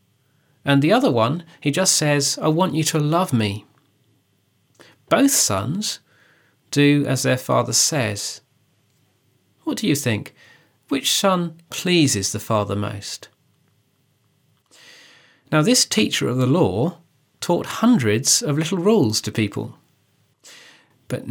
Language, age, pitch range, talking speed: English, 40-59, 115-155 Hz, 125 wpm